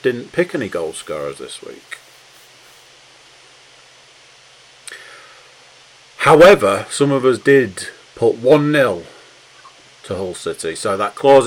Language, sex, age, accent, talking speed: English, male, 40-59, British, 100 wpm